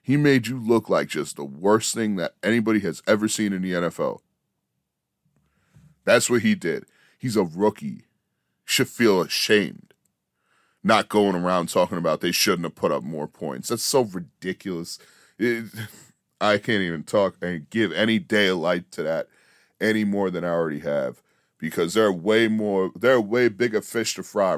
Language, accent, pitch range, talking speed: English, American, 100-115 Hz, 170 wpm